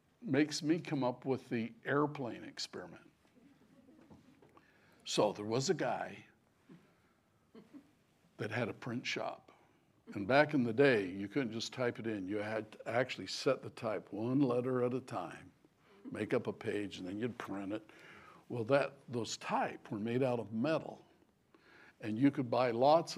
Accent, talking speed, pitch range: American, 165 wpm, 115-145 Hz